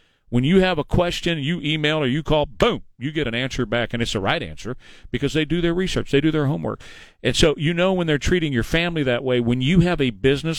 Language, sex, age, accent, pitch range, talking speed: English, male, 40-59, American, 125-160 Hz, 260 wpm